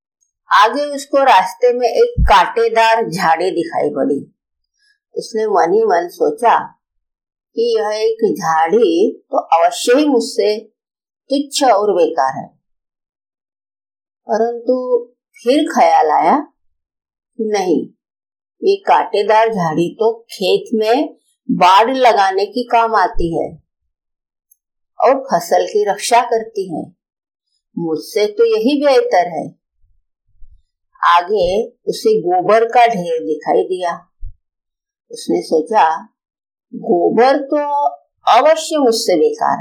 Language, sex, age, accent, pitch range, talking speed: Hindi, female, 50-69, native, 200-300 Hz, 105 wpm